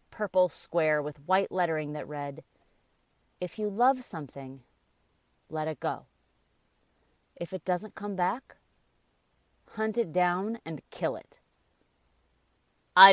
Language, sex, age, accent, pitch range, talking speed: English, female, 30-49, American, 155-210 Hz, 120 wpm